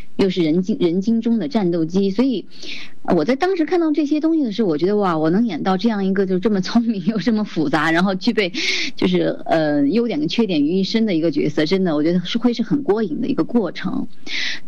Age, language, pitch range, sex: 30-49, Chinese, 175-255 Hz, female